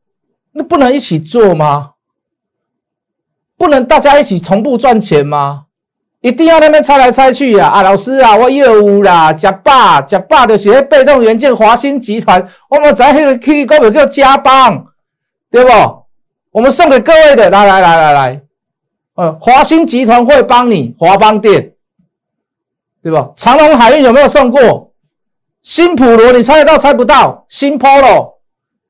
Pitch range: 210-285 Hz